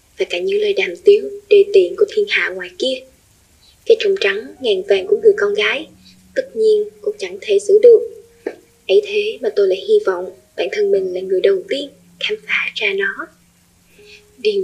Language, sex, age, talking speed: Vietnamese, female, 10-29, 195 wpm